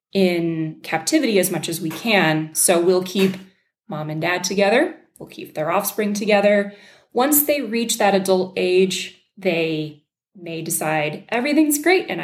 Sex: female